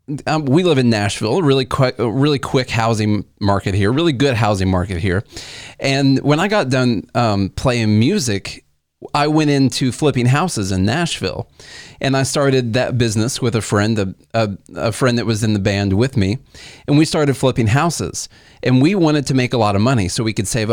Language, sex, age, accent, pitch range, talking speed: English, male, 30-49, American, 105-140 Hz, 195 wpm